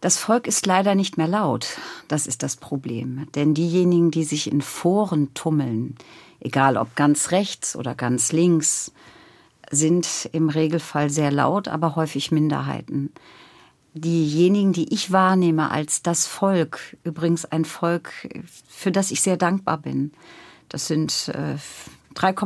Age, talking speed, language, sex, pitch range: 50-69, 140 wpm, German, female, 155-185 Hz